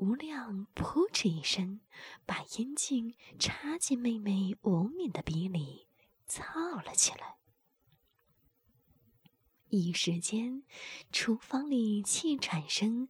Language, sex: Chinese, female